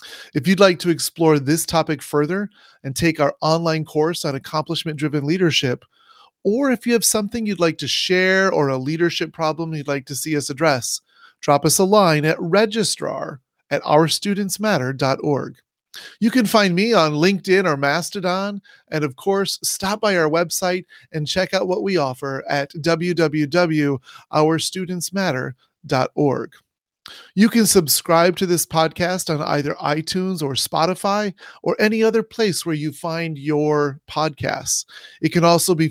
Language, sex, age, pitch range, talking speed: English, male, 30-49, 150-190 Hz, 150 wpm